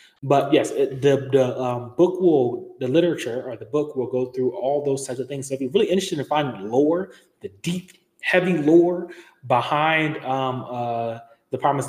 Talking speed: 195 wpm